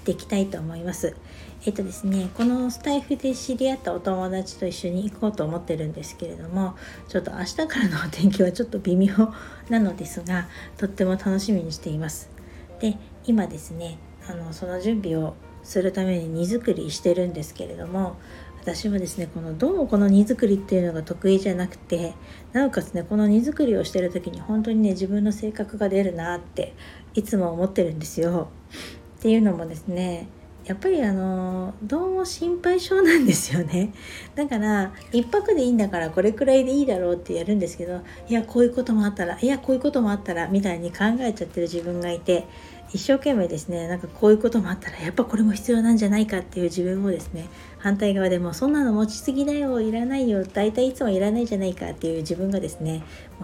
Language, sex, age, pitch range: Japanese, female, 60-79, 175-225 Hz